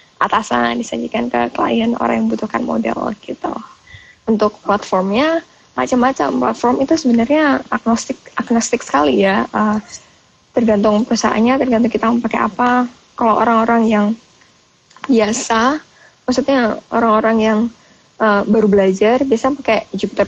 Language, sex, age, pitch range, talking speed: Indonesian, female, 20-39, 200-235 Hz, 120 wpm